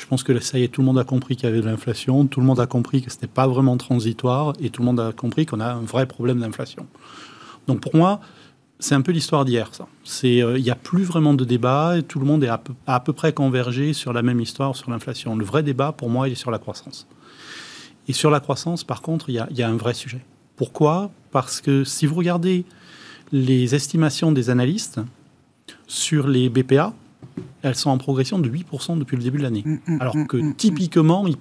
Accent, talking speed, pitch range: French, 235 wpm, 125-150 Hz